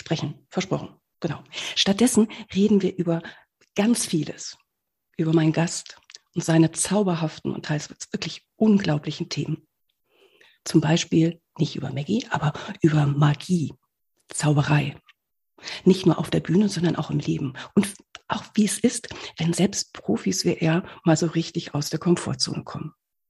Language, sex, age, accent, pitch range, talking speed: German, female, 50-69, German, 160-205 Hz, 140 wpm